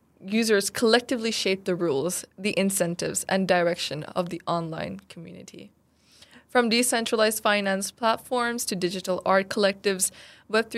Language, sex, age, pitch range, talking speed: English, female, 20-39, 180-215 Hz, 120 wpm